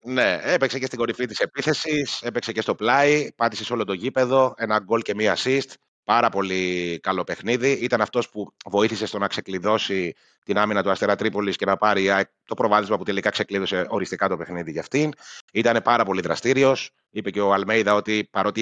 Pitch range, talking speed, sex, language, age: 100-125 Hz, 190 wpm, male, Greek, 30-49